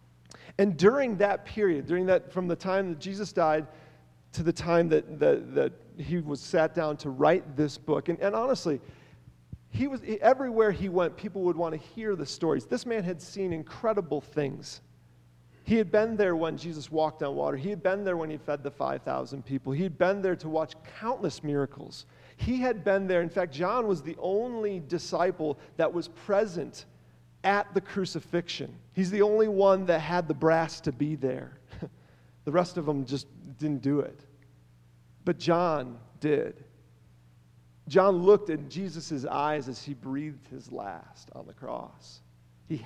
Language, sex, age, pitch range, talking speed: English, male, 40-59, 135-185 Hz, 180 wpm